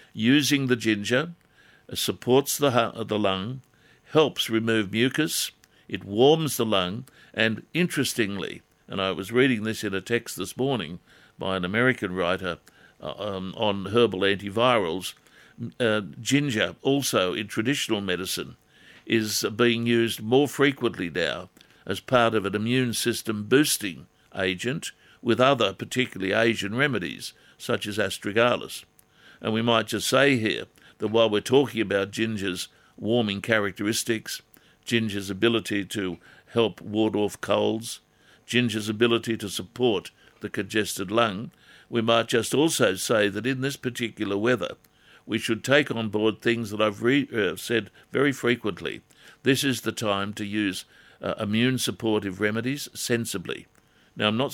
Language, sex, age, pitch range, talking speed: English, male, 60-79, 105-125 Hz, 140 wpm